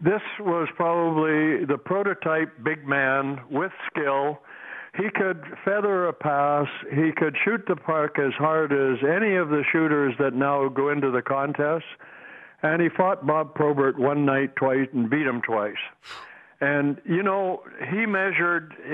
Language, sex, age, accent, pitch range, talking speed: English, male, 60-79, American, 145-185 Hz, 155 wpm